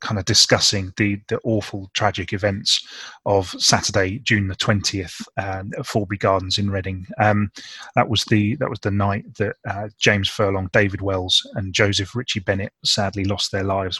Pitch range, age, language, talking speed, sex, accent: 100-115 Hz, 20-39, English, 175 wpm, male, British